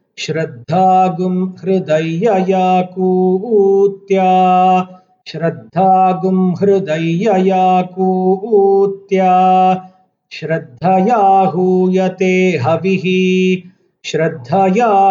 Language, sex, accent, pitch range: Hindi, male, native, 180-190 Hz